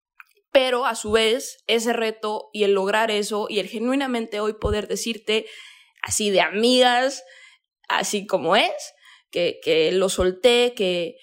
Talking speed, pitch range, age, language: 145 wpm, 190-225 Hz, 20-39, Spanish